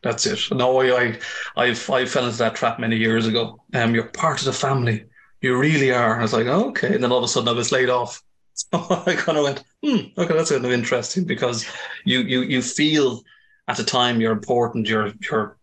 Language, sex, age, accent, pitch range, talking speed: English, male, 30-49, Irish, 110-135 Hz, 235 wpm